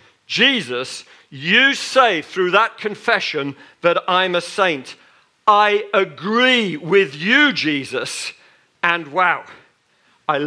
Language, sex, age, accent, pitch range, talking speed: English, male, 50-69, British, 160-255 Hz, 105 wpm